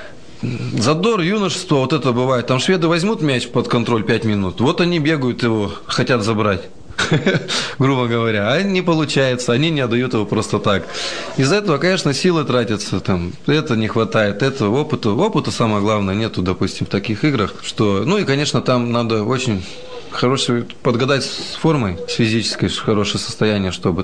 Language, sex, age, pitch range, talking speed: Russian, male, 20-39, 100-130 Hz, 160 wpm